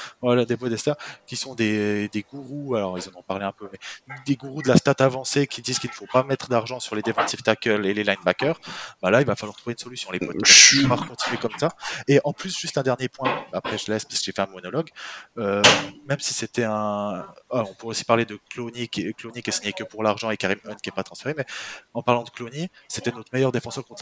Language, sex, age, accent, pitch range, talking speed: French, male, 20-39, French, 105-130 Hz, 255 wpm